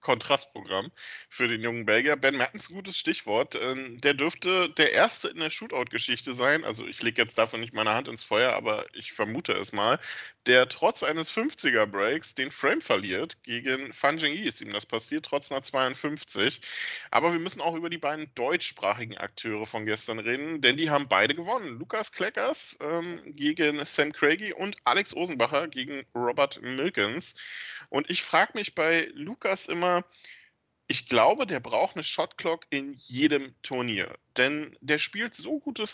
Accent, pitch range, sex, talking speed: German, 130-175 Hz, male, 165 wpm